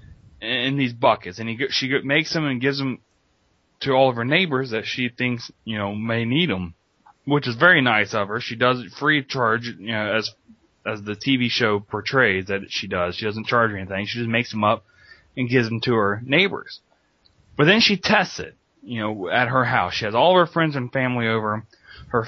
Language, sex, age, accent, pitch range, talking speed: English, male, 20-39, American, 115-150 Hz, 220 wpm